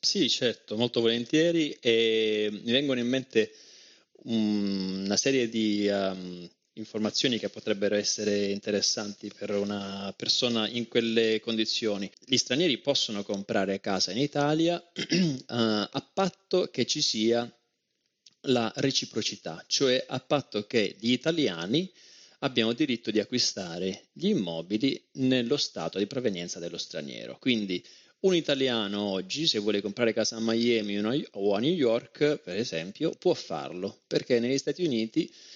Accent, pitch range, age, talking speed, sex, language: native, 100-130 Hz, 30-49, 135 wpm, male, Italian